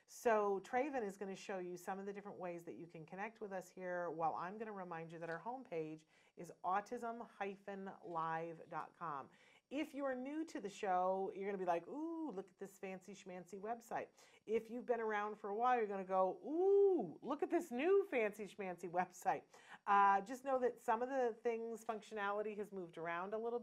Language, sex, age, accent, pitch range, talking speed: English, female, 40-59, American, 175-220 Hz, 210 wpm